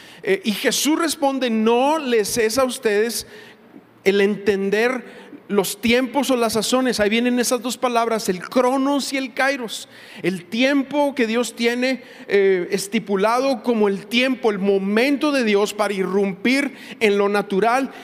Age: 40-59